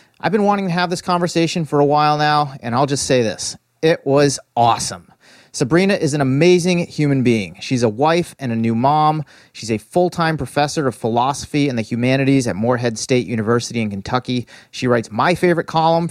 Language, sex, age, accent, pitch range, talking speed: English, male, 30-49, American, 120-150 Hz, 195 wpm